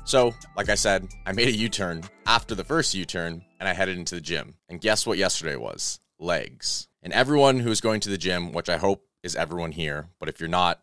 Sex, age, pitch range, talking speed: male, 20-39, 85-115 Hz, 235 wpm